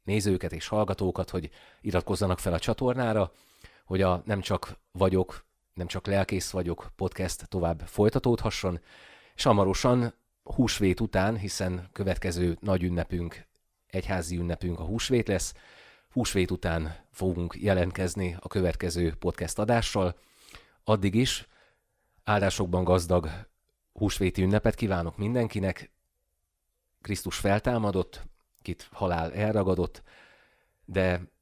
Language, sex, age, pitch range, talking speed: Hungarian, male, 30-49, 85-100 Hz, 105 wpm